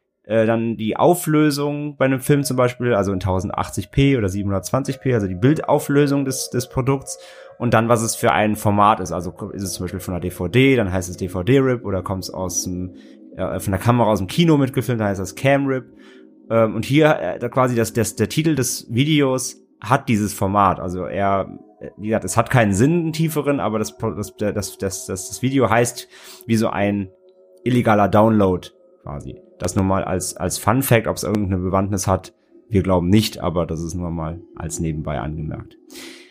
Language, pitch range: German, 95-130 Hz